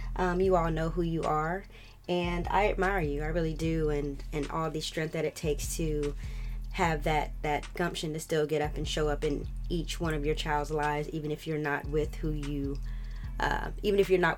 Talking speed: 220 wpm